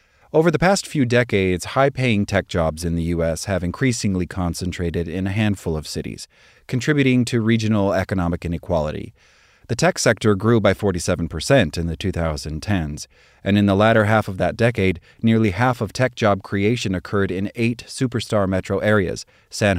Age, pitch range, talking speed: 30-49, 95-120 Hz, 160 wpm